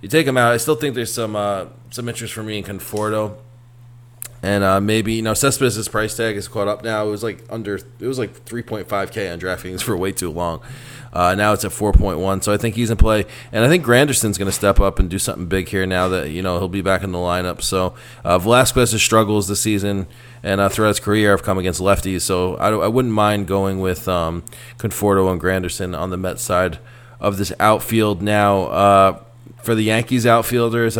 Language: English